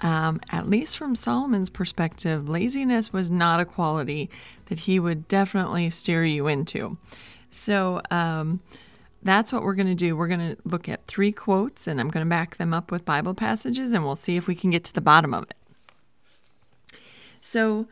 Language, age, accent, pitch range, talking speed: English, 30-49, American, 160-205 Hz, 190 wpm